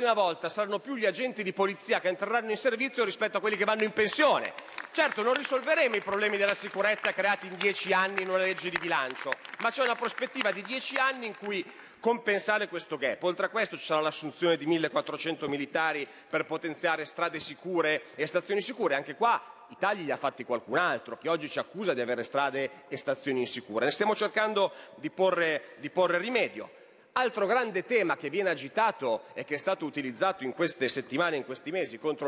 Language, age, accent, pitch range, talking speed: Italian, 30-49, native, 150-210 Hz, 205 wpm